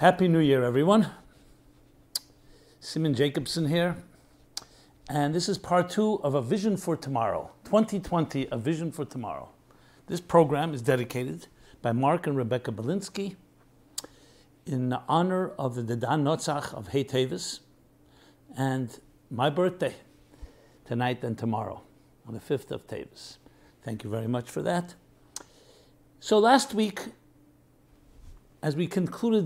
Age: 60-79